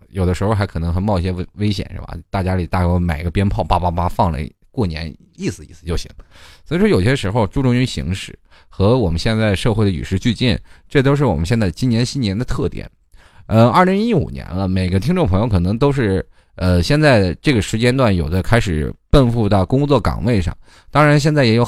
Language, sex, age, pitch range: Chinese, male, 20-39, 85-110 Hz